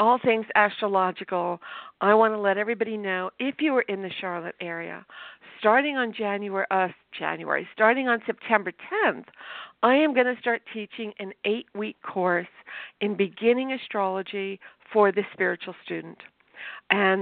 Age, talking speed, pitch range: 50-69, 145 wpm, 195-230 Hz